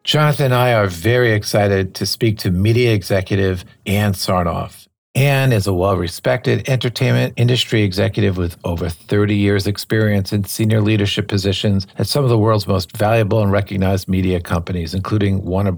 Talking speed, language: 160 wpm, English